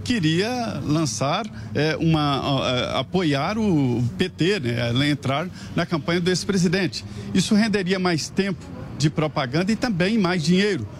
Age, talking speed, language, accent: 50-69, 135 wpm, Portuguese, Brazilian